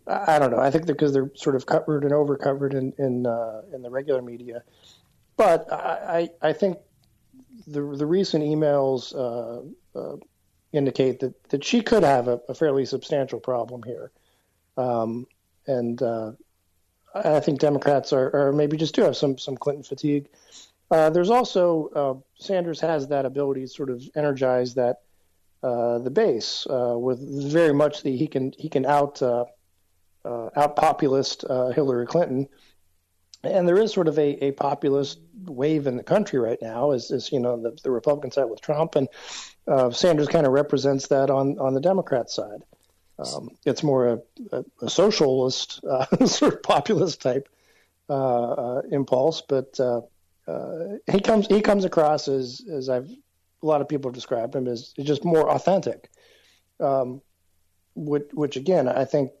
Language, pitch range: English, 125-150 Hz